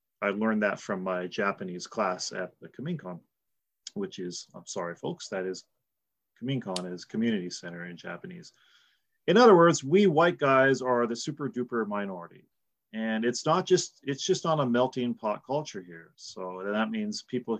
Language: English